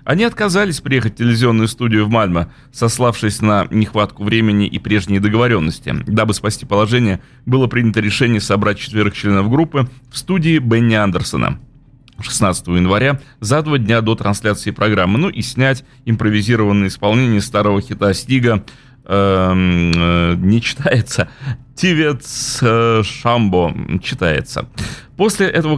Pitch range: 105-135 Hz